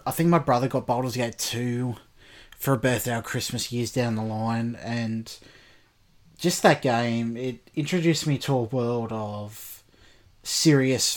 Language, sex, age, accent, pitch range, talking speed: English, male, 20-39, Australian, 110-130 Hz, 155 wpm